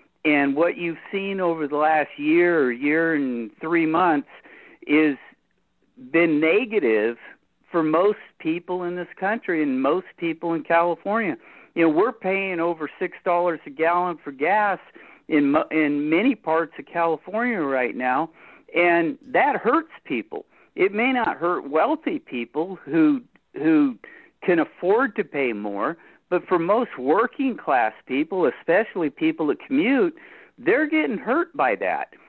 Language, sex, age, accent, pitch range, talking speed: English, male, 50-69, American, 165-275 Hz, 145 wpm